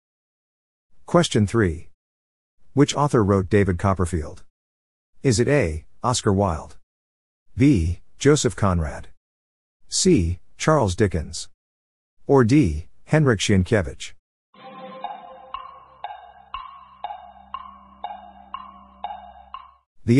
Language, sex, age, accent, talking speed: English, male, 50-69, American, 70 wpm